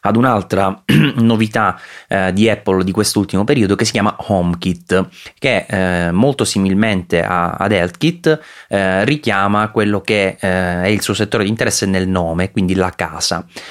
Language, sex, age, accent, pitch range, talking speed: Italian, male, 30-49, native, 90-105 Hz, 155 wpm